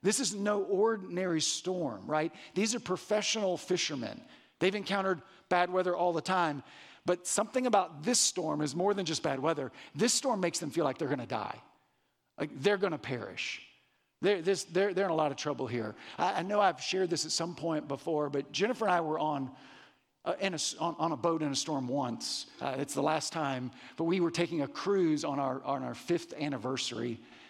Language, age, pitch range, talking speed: English, 50-69, 155-205 Hz, 210 wpm